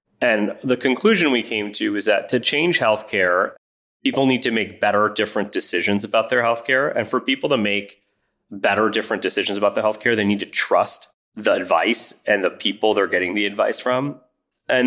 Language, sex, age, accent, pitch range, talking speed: English, male, 30-49, American, 100-125 Hz, 190 wpm